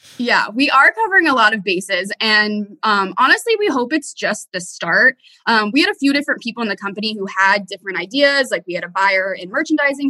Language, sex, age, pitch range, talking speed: English, female, 20-39, 190-275 Hz, 225 wpm